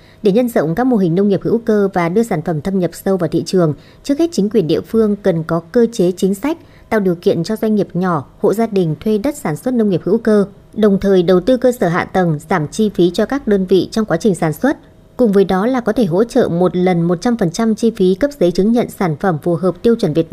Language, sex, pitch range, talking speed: Vietnamese, male, 180-225 Hz, 275 wpm